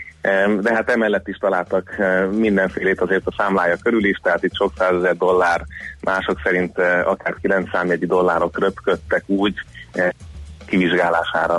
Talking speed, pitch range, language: 130 wpm, 90-100 Hz, Hungarian